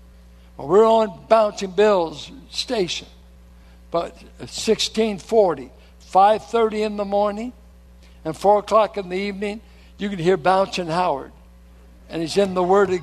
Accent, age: American, 60-79